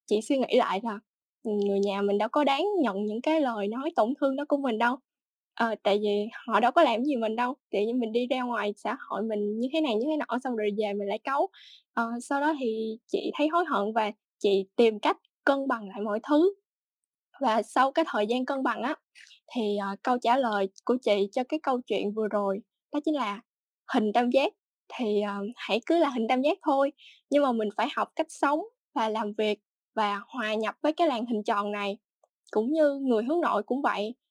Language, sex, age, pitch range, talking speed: Vietnamese, female, 10-29, 215-295 Hz, 230 wpm